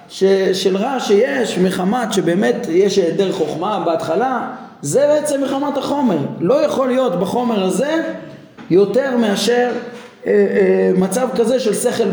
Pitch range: 190-245 Hz